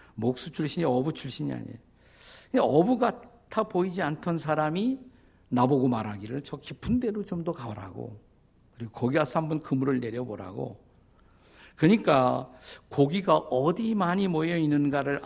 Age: 50-69